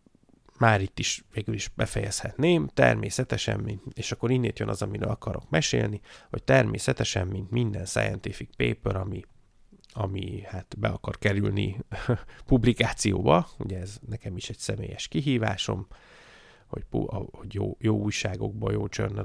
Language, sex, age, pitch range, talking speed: Hungarian, male, 30-49, 100-115 Hz, 130 wpm